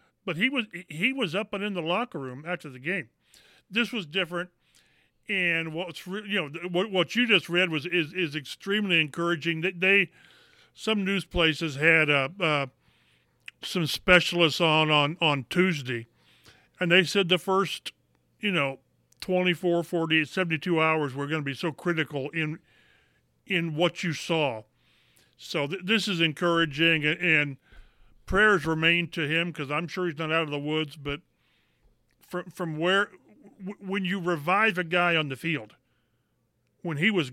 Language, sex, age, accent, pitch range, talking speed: English, male, 50-69, American, 150-180 Hz, 165 wpm